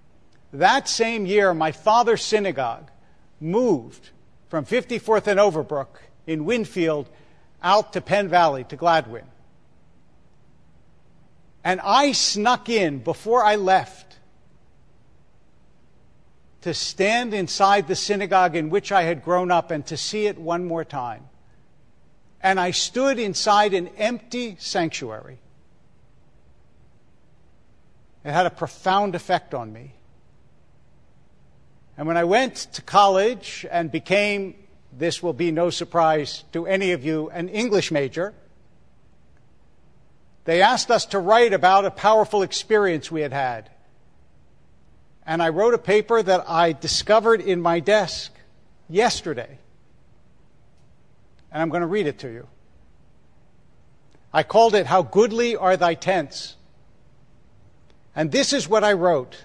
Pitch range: 160-210 Hz